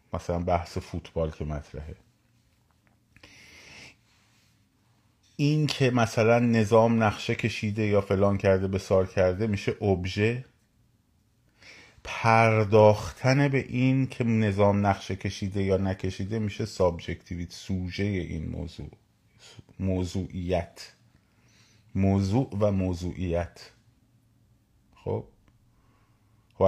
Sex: male